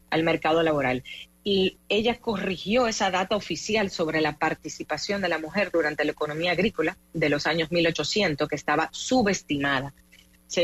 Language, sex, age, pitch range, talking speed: English, female, 30-49, 150-190 Hz, 150 wpm